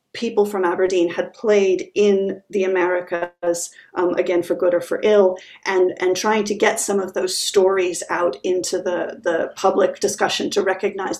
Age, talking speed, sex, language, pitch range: 40-59, 170 wpm, female, English, 180-215 Hz